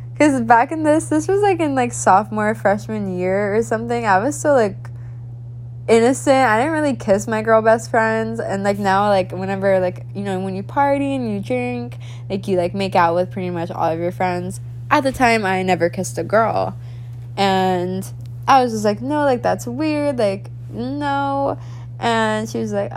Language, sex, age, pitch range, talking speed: English, female, 10-29, 120-200 Hz, 200 wpm